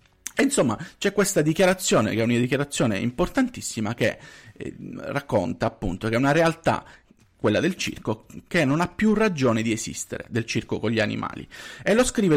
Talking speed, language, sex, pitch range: 175 wpm, Italian, male, 120-185 Hz